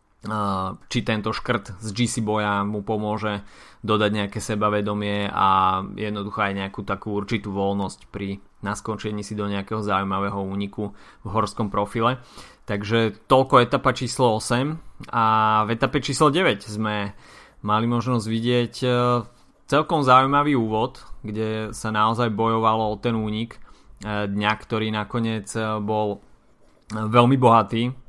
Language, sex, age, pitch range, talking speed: Slovak, male, 20-39, 105-120 Hz, 125 wpm